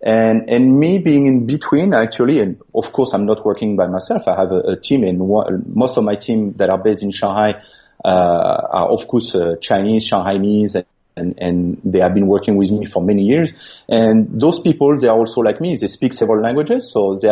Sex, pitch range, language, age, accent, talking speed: male, 105-120 Hz, English, 30-49, French, 220 wpm